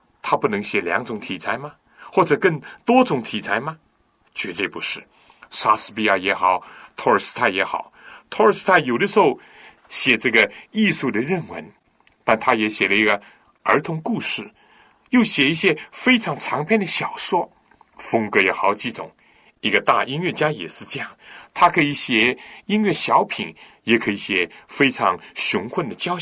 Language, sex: Chinese, male